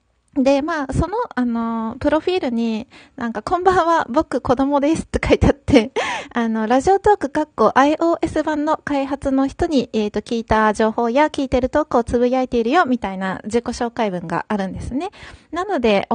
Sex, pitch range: female, 215-290 Hz